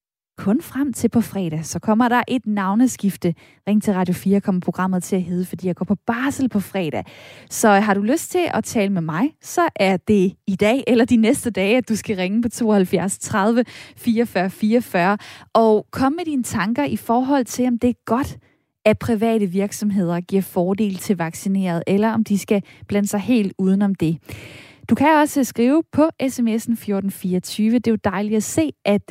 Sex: female